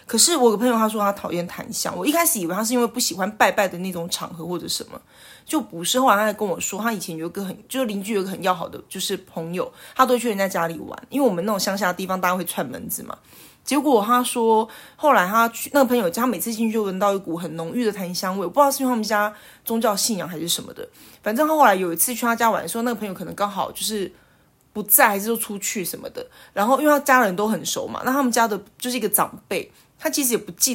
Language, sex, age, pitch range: Chinese, female, 30-49, 185-250 Hz